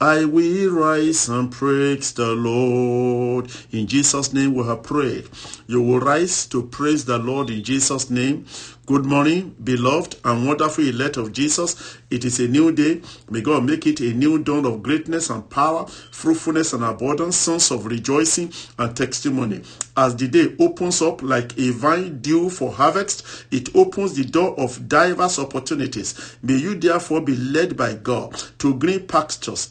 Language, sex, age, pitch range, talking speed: English, male, 50-69, 125-165 Hz, 170 wpm